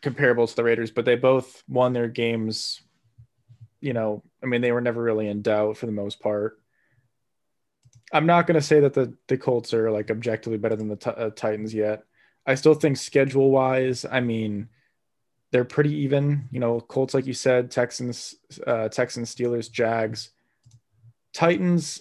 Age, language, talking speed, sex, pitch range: 20-39, English, 175 wpm, male, 115-140 Hz